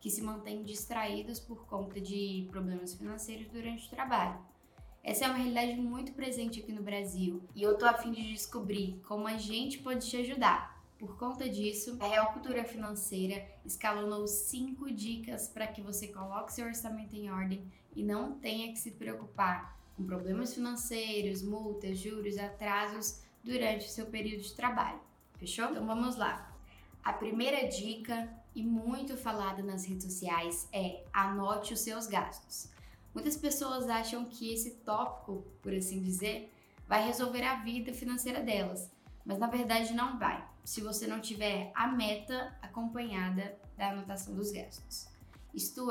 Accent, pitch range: Brazilian, 205-240 Hz